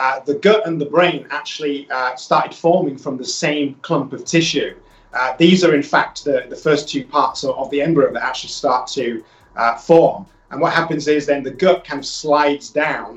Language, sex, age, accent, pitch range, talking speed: English, male, 30-49, British, 140-170 Hz, 215 wpm